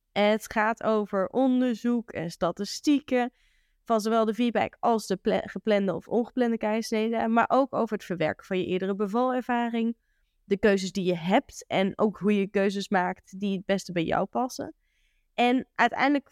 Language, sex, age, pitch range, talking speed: Dutch, female, 20-39, 205-255 Hz, 165 wpm